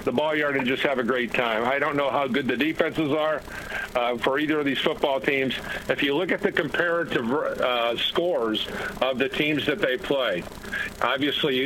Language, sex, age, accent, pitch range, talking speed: English, male, 50-69, American, 130-150 Hz, 200 wpm